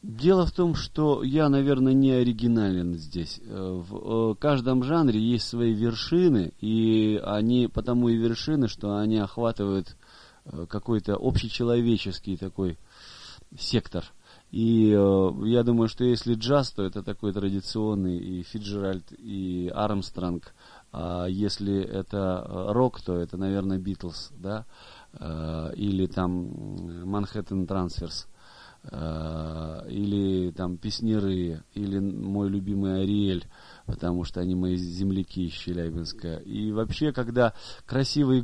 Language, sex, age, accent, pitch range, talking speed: Russian, male, 30-49, native, 95-120 Hz, 110 wpm